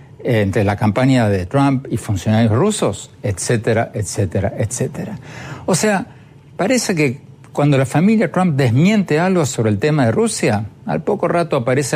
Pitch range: 115-150 Hz